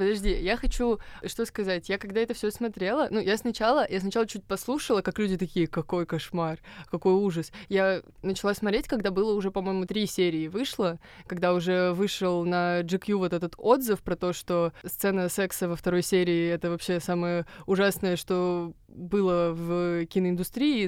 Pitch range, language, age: 180-220 Hz, Russian, 20-39